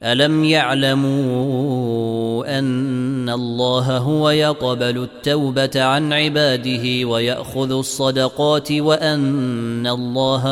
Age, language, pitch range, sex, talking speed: 20-39, Arabic, 120-140 Hz, male, 75 wpm